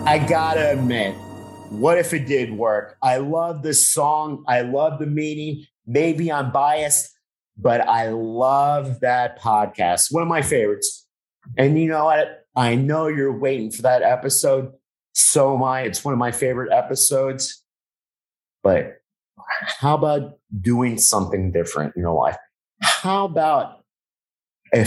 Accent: American